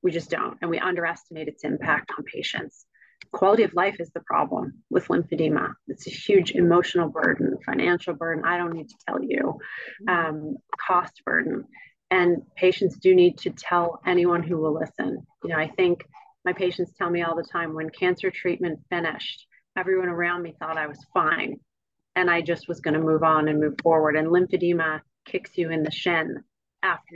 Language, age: English, 30-49